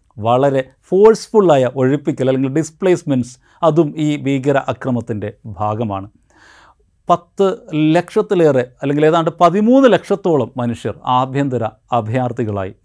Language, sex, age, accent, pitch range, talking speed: Malayalam, male, 50-69, native, 120-170 Hz, 85 wpm